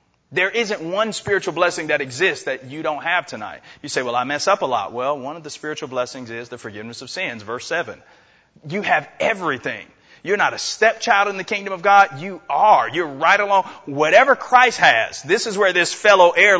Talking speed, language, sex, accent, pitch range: 215 wpm, English, male, American, 150-215 Hz